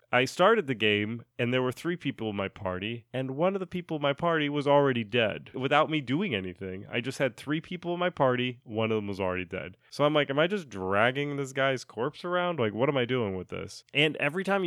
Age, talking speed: 30-49, 255 wpm